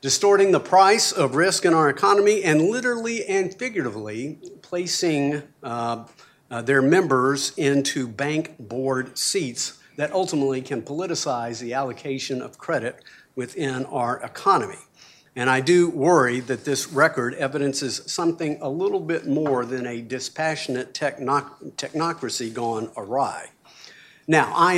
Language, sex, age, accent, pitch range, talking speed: English, male, 50-69, American, 130-165 Hz, 130 wpm